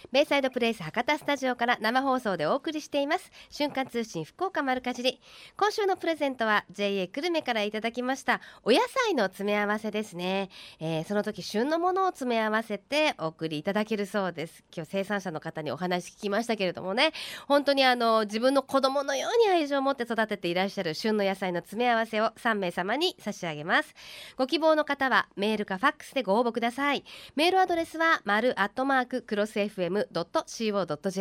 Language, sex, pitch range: Japanese, female, 195-275 Hz